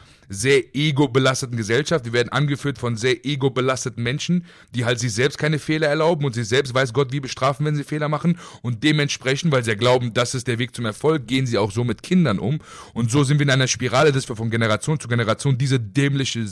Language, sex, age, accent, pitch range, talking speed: German, male, 30-49, German, 115-150 Hz, 225 wpm